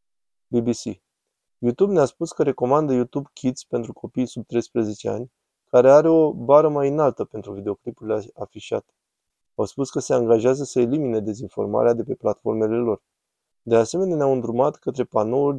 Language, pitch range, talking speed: Romanian, 110-140 Hz, 155 wpm